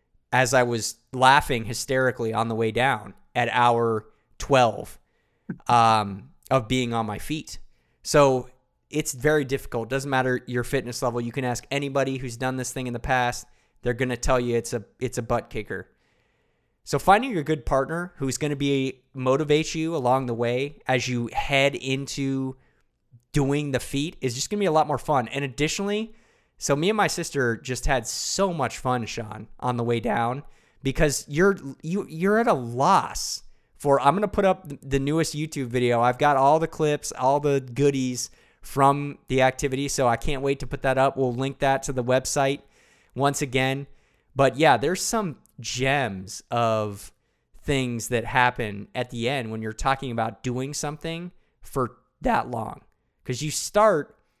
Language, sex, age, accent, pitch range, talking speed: English, male, 20-39, American, 120-145 Hz, 175 wpm